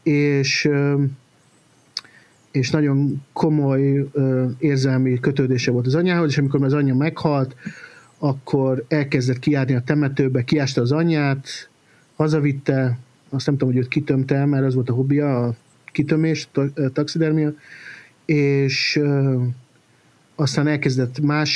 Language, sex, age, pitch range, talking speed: Hungarian, male, 50-69, 130-150 Hz, 115 wpm